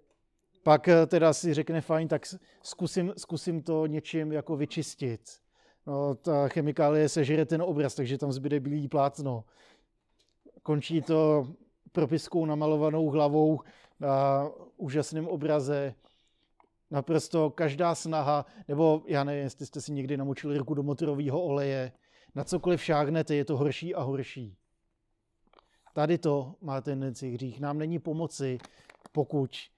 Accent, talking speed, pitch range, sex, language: native, 125 wpm, 135-160 Hz, male, Czech